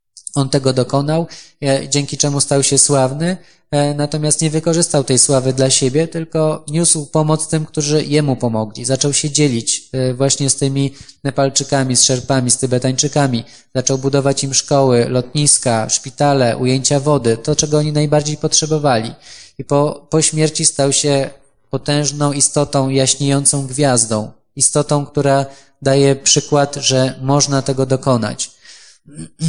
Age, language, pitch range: 20-39, Polish, 130-150 Hz